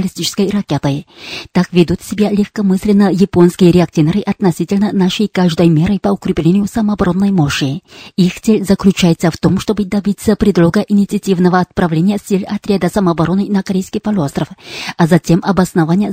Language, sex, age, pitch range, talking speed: Russian, female, 30-49, 170-205 Hz, 130 wpm